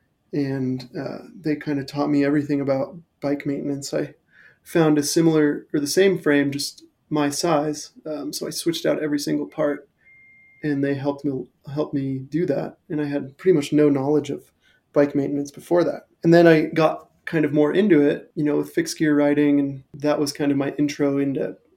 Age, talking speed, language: 20-39, 200 wpm, English